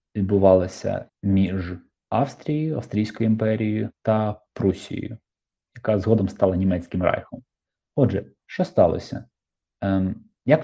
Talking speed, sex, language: 90 wpm, male, Ukrainian